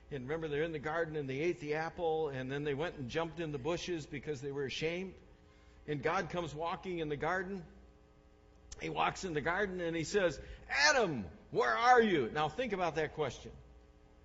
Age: 60-79